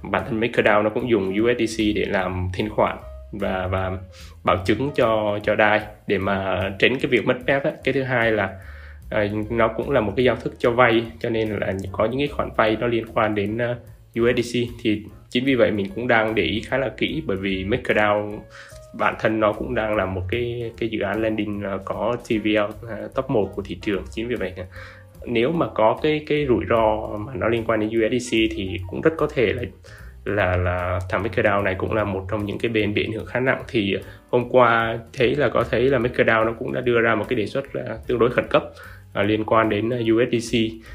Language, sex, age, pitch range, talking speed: Vietnamese, male, 20-39, 100-120 Hz, 215 wpm